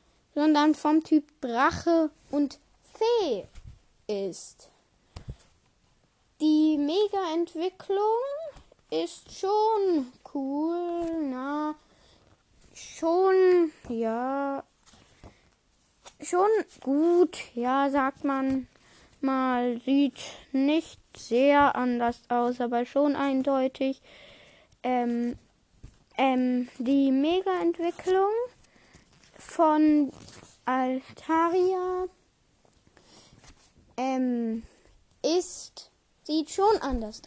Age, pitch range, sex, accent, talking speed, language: 10-29, 270-360 Hz, female, German, 65 wpm, German